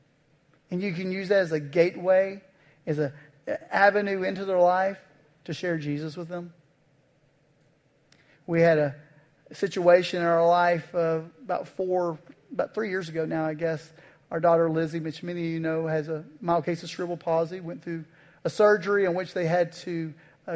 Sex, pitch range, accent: male, 155-190 Hz, American